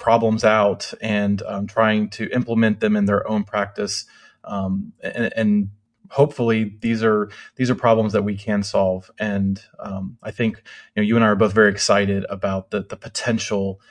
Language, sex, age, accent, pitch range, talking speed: English, male, 20-39, American, 105-115 Hz, 180 wpm